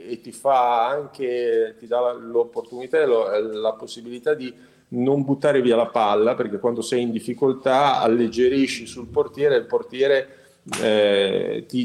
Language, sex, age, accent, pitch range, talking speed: Italian, male, 40-59, native, 120-150 Hz, 145 wpm